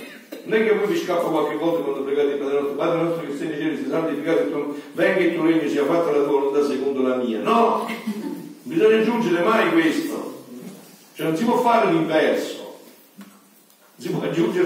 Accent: native